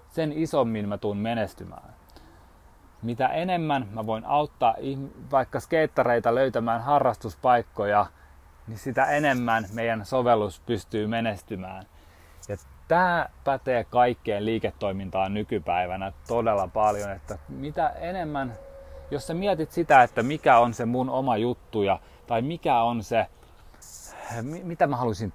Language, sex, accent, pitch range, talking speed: Finnish, male, native, 100-140 Hz, 120 wpm